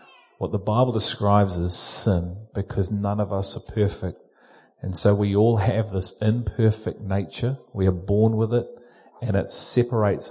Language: English